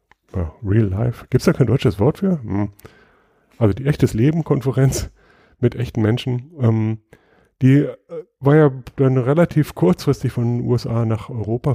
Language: English